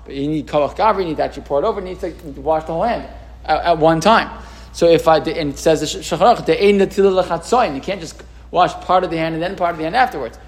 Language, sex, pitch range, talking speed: English, male, 155-205 Hz, 270 wpm